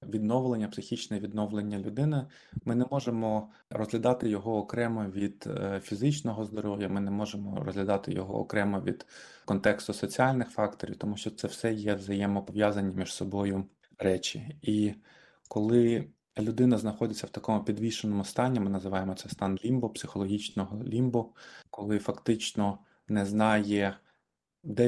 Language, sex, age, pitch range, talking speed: Ukrainian, male, 20-39, 100-110 Hz, 125 wpm